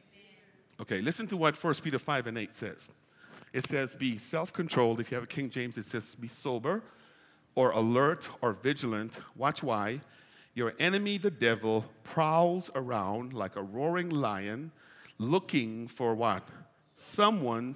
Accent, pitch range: American, 130-195 Hz